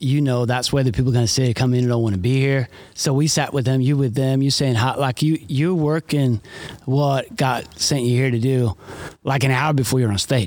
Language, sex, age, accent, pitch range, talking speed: Swedish, male, 30-49, American, 125-150 Hz, 260 wpm